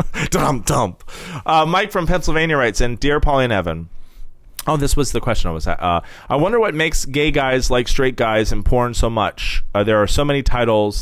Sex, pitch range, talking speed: male, 90-130 Hz, 210 wpm